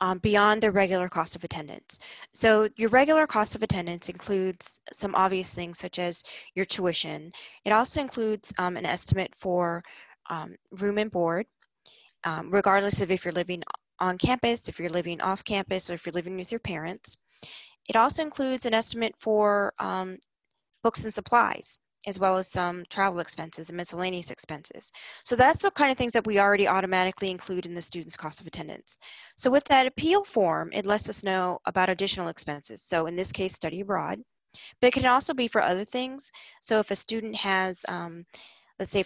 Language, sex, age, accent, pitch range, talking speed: English, female, 20-39, American, 175-210 Hz, 185 wpm